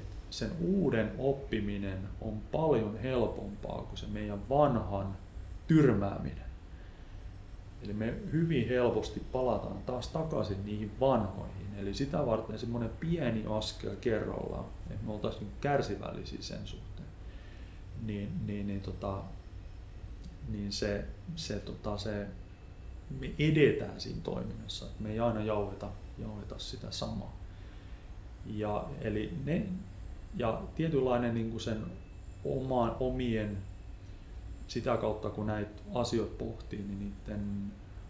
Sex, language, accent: male, Finnish, native